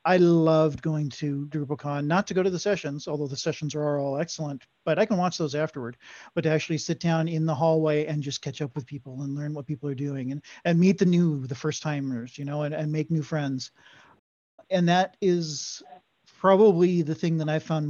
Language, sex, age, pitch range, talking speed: English, male, 40-59, 145-175 Hz, 225 wpm